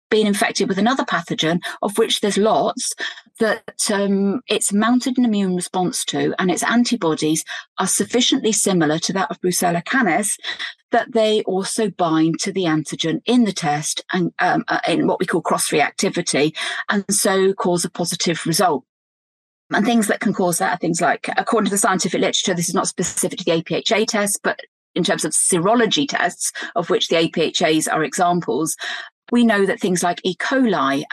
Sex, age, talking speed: female, 30-49, 180 wpm